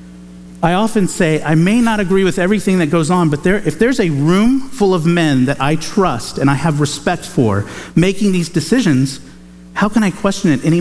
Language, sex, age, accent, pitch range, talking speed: English, male, 50-69, American, 140-200 Hz, 205 wpm